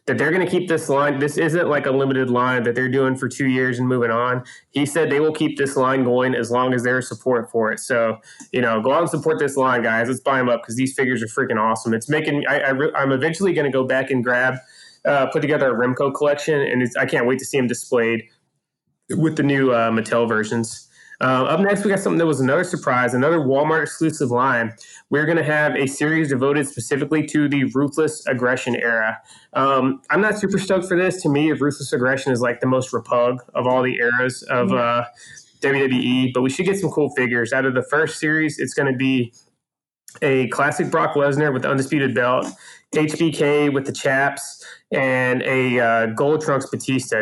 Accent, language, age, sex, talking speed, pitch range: American, English, 20-39, male, 220 wpm, 125-150 Hz